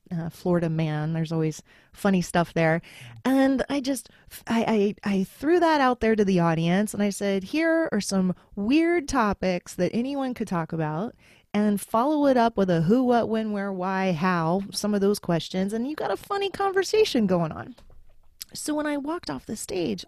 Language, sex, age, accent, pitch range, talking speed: English, female, 30-49, American, 185-240 Hz, 195 wpm